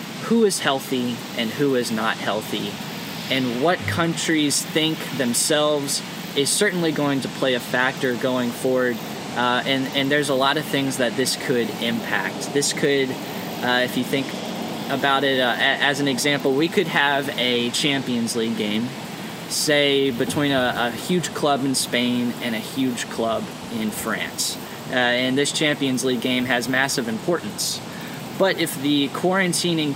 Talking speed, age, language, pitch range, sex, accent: 160 wpm, 10-29, English, 125-155 Hz, male, American